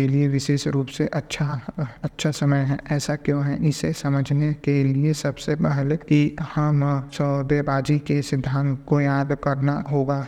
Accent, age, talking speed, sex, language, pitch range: native, 20-39, 140 wpm, male, Hindi, 140-145 Hz